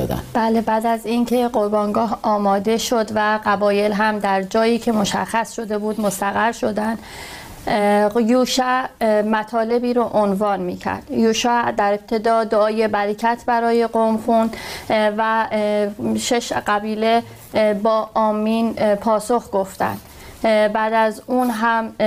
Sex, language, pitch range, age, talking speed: female, Persian, 210-235 Hz, 30-49, 115 wpm